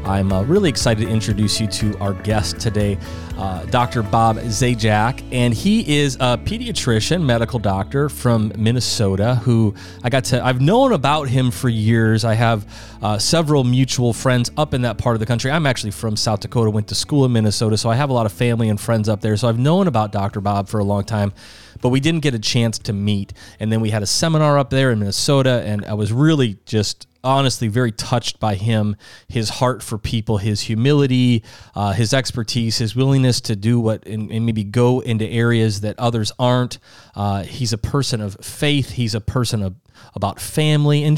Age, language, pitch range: 30-49, English, 105-125 Hz